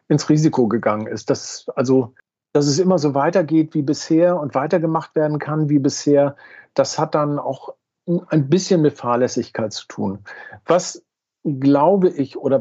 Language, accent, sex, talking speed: German, German, male, 155 wpm